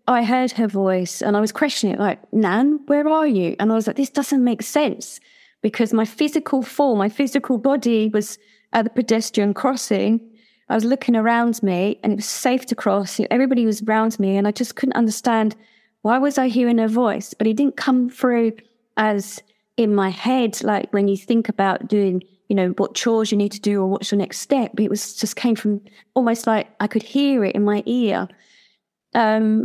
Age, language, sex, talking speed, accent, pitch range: 20-39, English, female, 210 wpm, British, 205-235 Hz